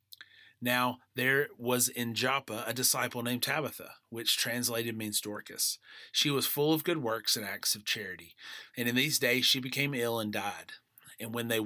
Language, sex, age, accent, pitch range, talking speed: English, male, 30-49, American, 110-125 Hz, 180 wpm